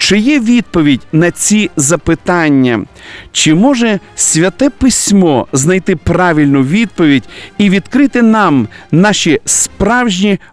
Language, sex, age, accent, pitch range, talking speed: Russian, male, 50-69, native, 160-225 Hz, 105 wpm